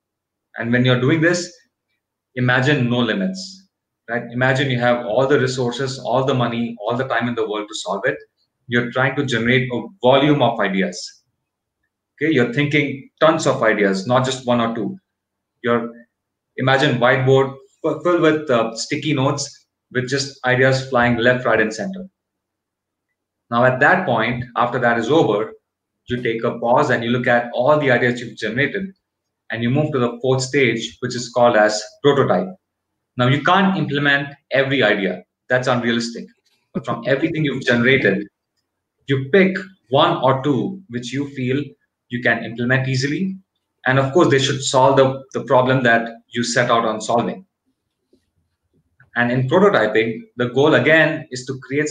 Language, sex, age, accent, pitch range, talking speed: English, male, 30-49, Indian, 120-140 Hz, 165 wpm